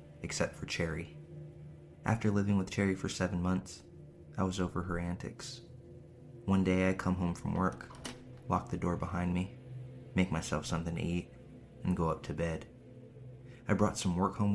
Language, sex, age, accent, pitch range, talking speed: English, male, 20-39, American, 85-125 Hz, 175 wpm